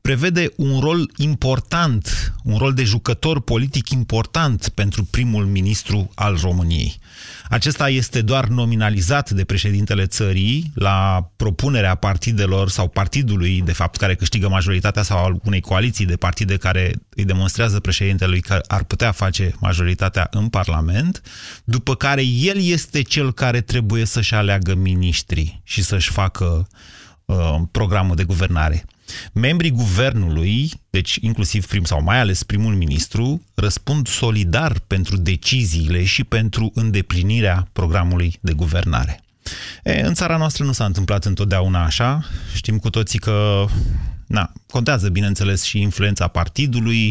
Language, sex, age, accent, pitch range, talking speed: Romanian, male, 30-49, native, 95-120 Hz, 130 wpm